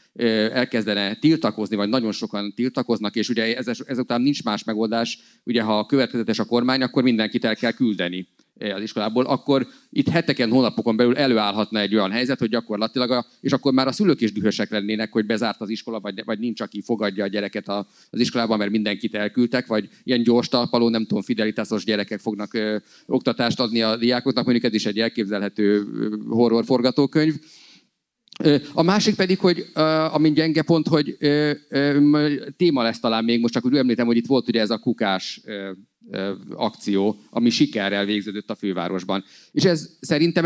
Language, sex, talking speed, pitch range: Hungarian, male, 170 wpm, 105-135 Hz